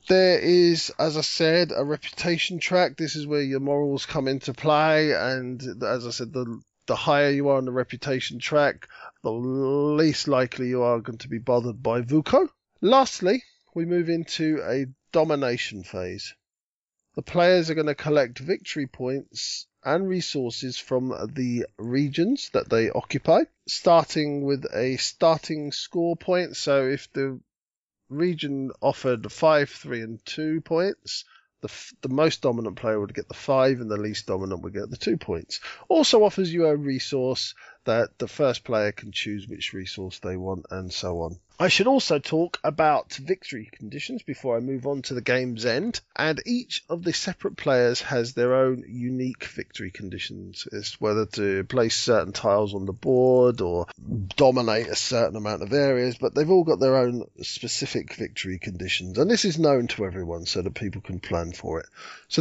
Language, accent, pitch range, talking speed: English, British, 115-155 Hz, 175 wpm